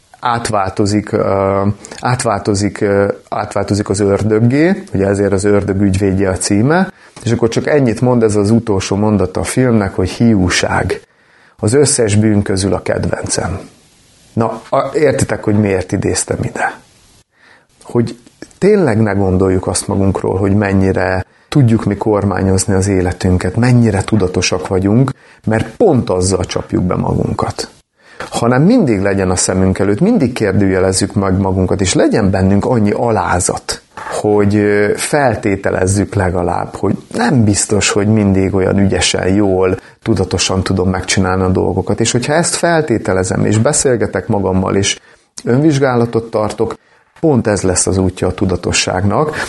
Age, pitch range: 30-49, 95-110 Hz